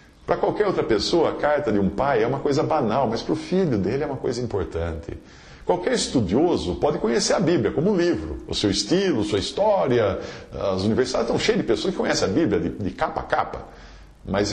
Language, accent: English, Brazilian